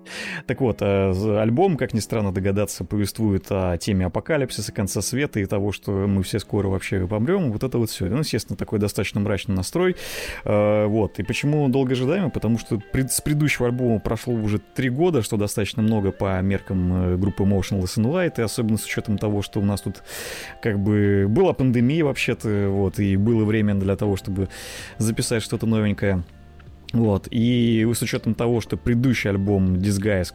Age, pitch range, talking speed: 30-49, 100-120 Hz, 170 wpm